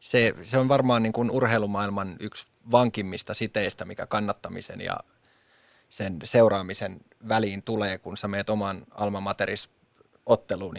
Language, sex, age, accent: Finnish, male, 20-39, native